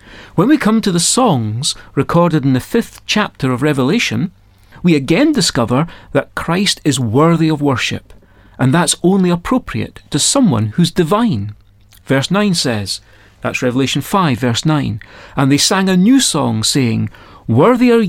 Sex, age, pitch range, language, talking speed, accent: male, 40-59, 115-180 Hz, English, 155 wpm, British